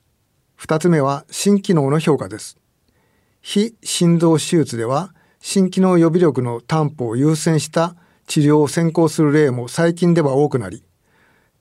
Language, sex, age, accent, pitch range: Japanese, male, 60-79, native, 130-175 Hz